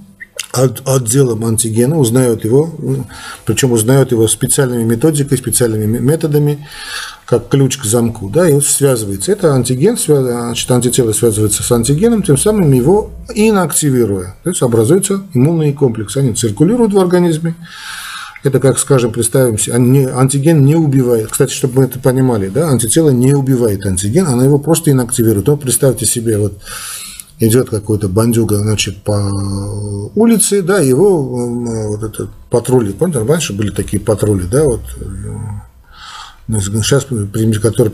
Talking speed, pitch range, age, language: 140 wpm, 110-140 Hz, 40-59, Russian